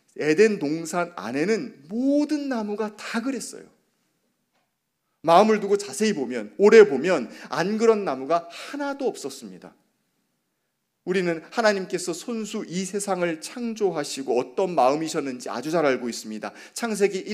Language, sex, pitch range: Korean, male, 150-225 Hz